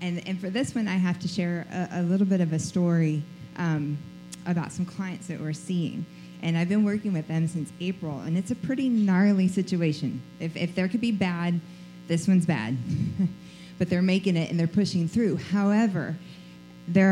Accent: American